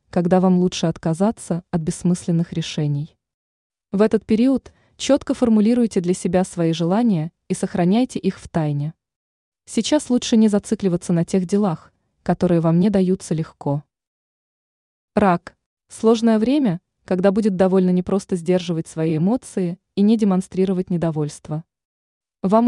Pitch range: 175-220 Hz